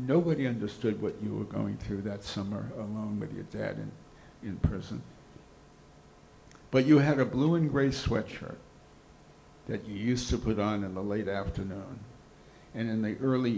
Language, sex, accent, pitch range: English, male, American, 105-125 Hz